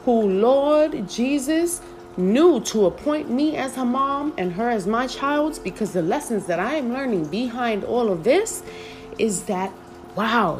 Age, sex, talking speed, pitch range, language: 30-49, female, 165 wpm, 165-230 Hz, English